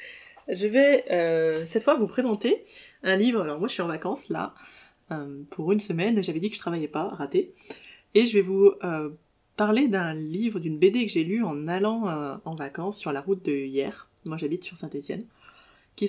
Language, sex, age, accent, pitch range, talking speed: French, female, 20-39, French, 160-210 Hz, 205 wpm